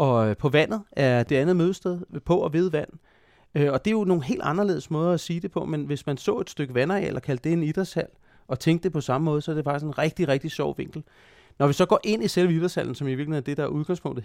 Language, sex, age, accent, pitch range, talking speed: Danish, male, 30-49, native, 130-165 Hz, 275 wpm